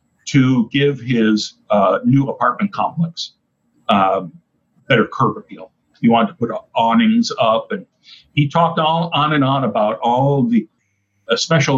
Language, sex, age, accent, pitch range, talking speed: English, male, 50-69, American, 135-205 Hz, 155 wpm